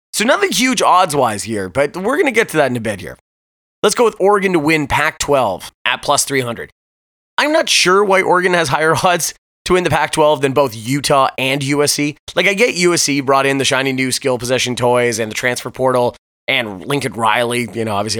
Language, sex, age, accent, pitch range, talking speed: English, male, 30-49, American, 125-180 Hz, 215 wpm